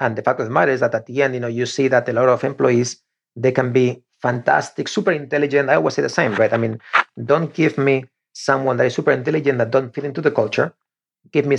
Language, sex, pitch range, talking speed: English, male, 120-145 Hz, 260 wpm